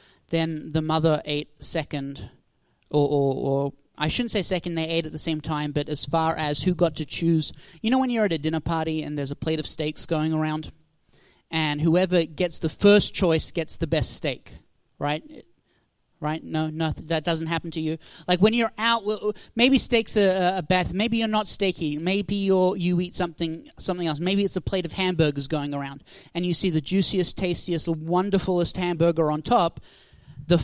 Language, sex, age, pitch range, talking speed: English, male, 30-49, 160-190 Hz, 195 wpm